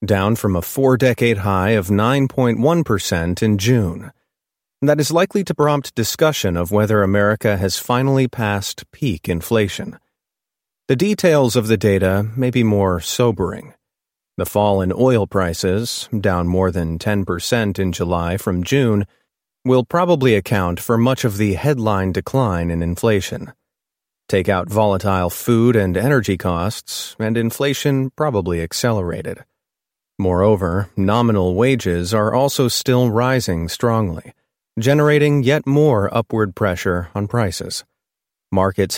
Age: 30-49